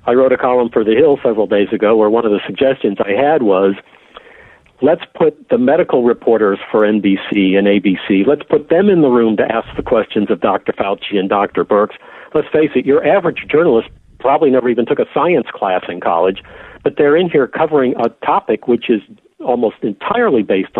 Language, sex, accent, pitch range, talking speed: English, male, American, 100-130 Hz, 200 wpm